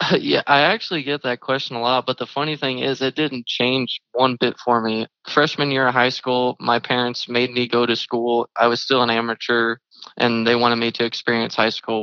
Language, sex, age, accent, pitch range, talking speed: English, male, 20-39, American, 115-125 Hz, 225 wpm